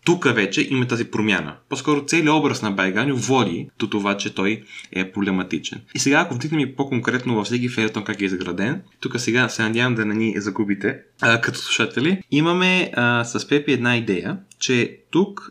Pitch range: 110-150 Hz